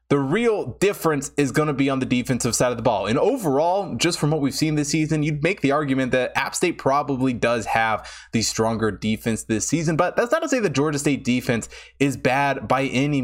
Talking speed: 230 wpm